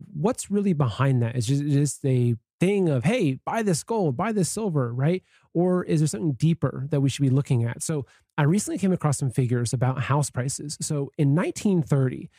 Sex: male